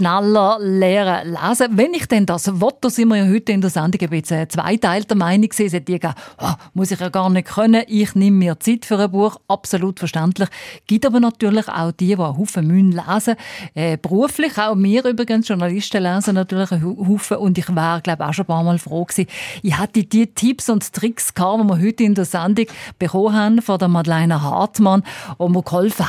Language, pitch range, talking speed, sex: German, 180-220 Hz, 205 wpm, female